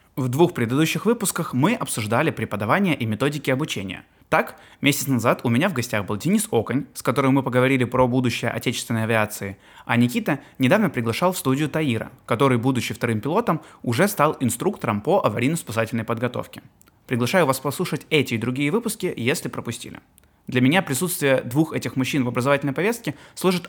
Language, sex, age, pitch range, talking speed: Russian, male, 20-39, 115-150 Hz, 160 wpm